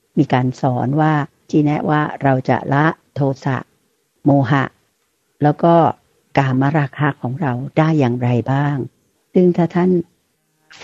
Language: Thai